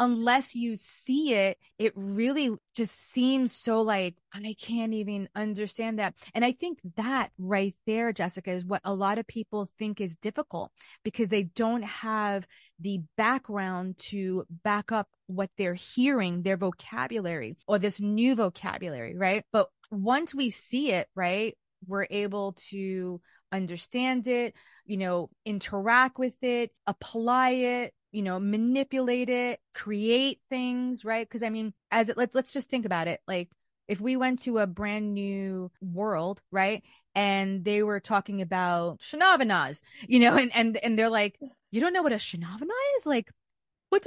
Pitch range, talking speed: 200-260 Hz, 160 wpm